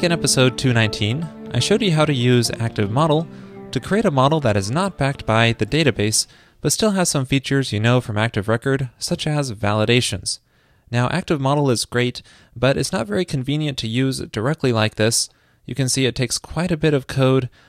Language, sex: English, male